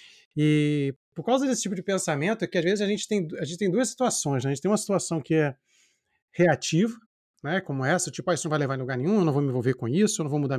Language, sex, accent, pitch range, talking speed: Portuguese, male, Brazilian, 135-175 Hz, 290 wpm